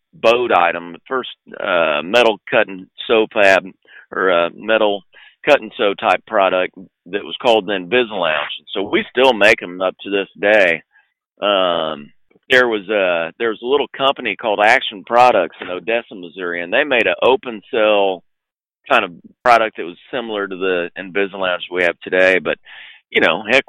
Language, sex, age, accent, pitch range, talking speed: English, male, 40-59, American, 90-120 Hz, 175 wpm